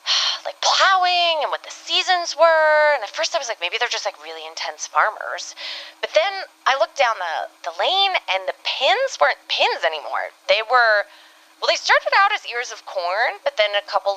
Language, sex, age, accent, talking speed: English, female, 20-39, American, 205 wpm